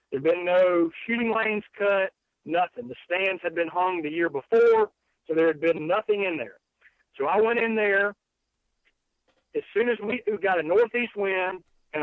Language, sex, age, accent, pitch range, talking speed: English, male, 50-69, American, 165-200 Hz, 190 wpm